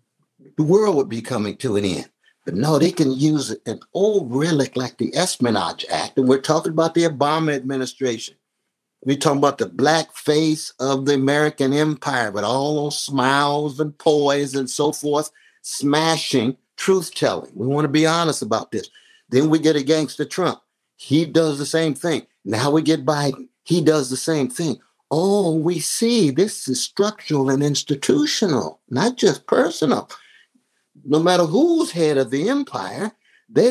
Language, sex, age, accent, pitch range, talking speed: English, male, 60-79, American, 135-170 Hz, 165 wpm